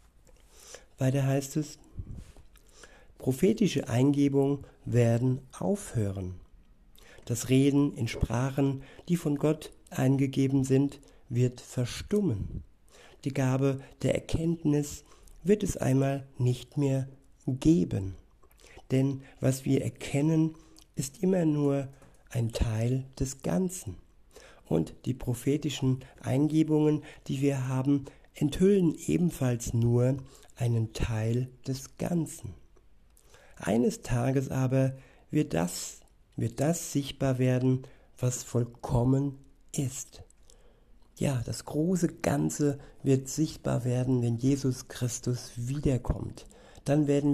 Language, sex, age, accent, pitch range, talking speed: German, male, 60-79, German, 125-145 Hz, 100 wpm